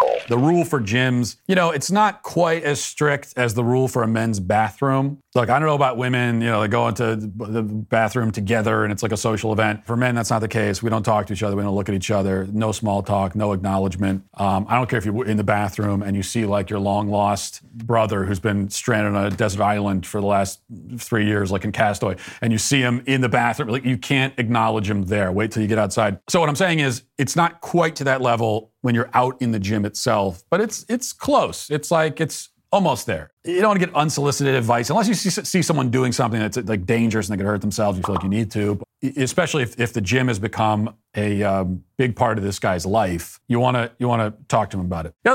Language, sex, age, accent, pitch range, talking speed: English, male, 40-59, American, 105-130 Hz, 255 wpm